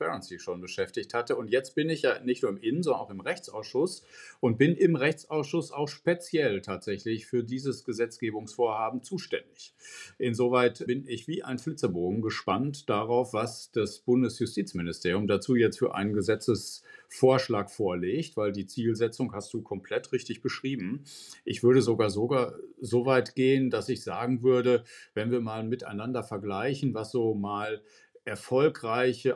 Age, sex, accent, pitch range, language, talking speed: 50-69, male, German, 110-140 Hz, German, 145 wpm